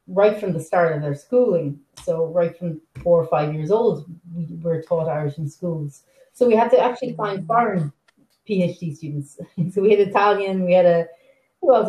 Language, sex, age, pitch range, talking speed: English, female, 30-49, 160-205 Hz, 190 wpm